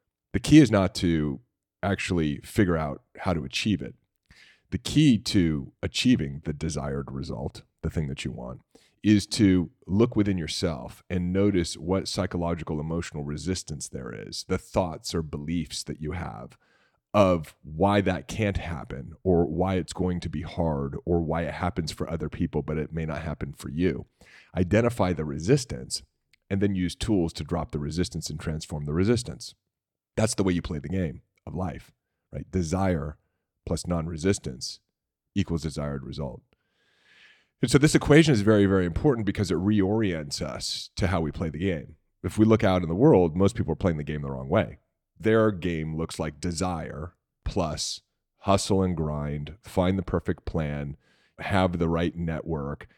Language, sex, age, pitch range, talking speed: English, male, 30-49, 75-95 Hz, 170 wpm